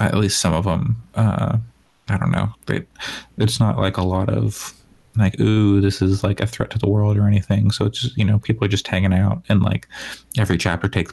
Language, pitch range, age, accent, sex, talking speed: English, 95-115 Hz, 20-39, American, male, 230 wpm